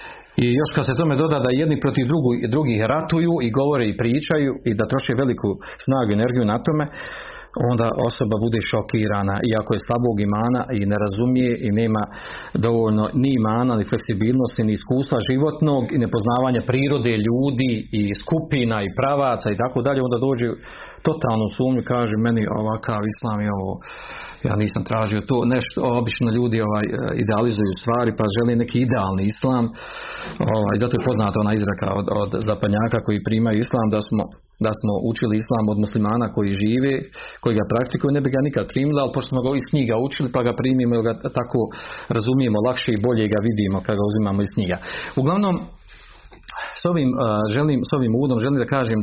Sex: male